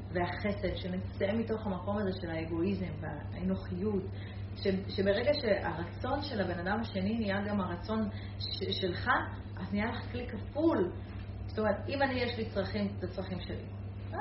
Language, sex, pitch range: Hebrew, female, 95-105 Hz